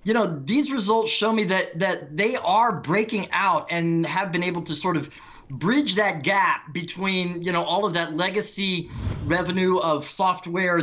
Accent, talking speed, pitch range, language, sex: American, 175 wpm, 150-190 Hz, English, male